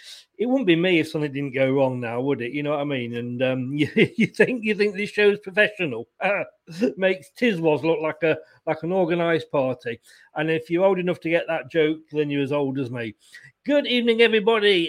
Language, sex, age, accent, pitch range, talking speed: English, male, 40-59, British, 160-215 Hz, 220 wpm